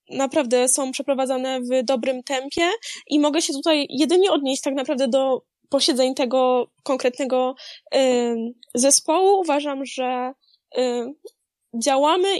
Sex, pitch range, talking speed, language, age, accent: female, 260-305 Hz, 105 wpm, Polish, 10-29, native